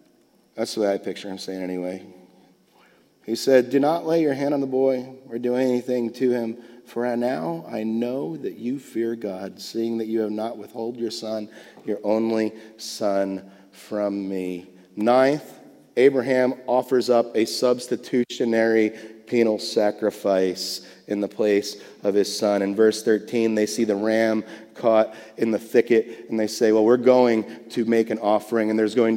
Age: 30-49